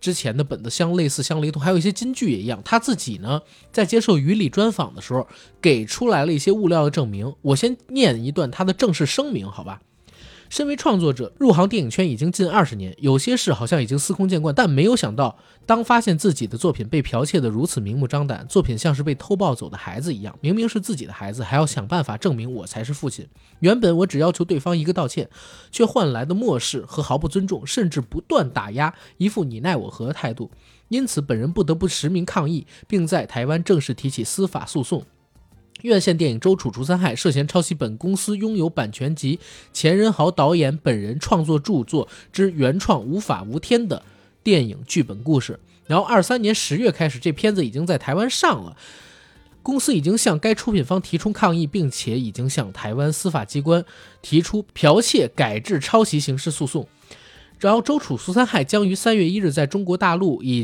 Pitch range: 135-195 Hz